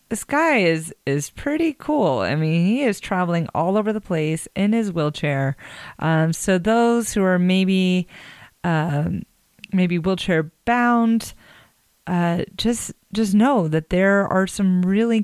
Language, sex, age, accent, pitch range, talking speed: English, female, 30-49, American, 160-195 Hz, 145 wpm